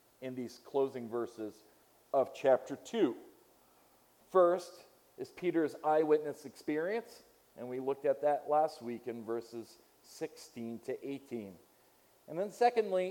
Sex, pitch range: male, 130-180 Hz